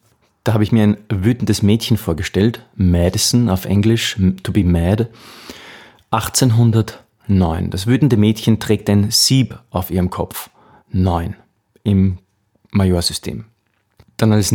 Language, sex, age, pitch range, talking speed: German, male, 30-49, 95-115 Hz, 120 wpm